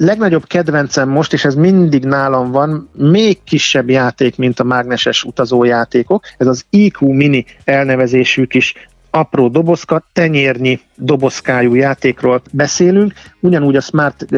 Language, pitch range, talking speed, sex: Hungarian, 130-160 Hz, 125 wpm, male